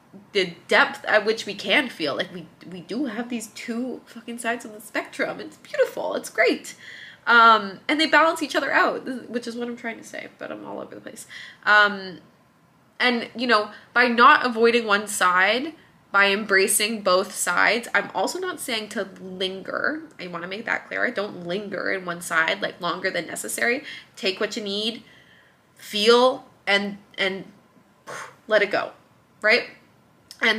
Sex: female